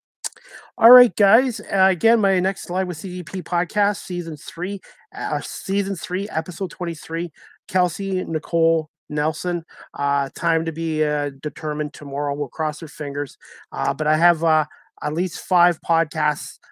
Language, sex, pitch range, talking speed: English, male, 145-180 Hz, 145 wpm